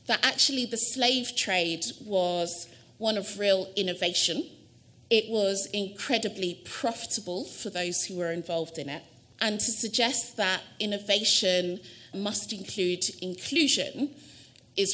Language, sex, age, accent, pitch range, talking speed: English, female, 30-49, British, 185-240 Hz, 120 wpm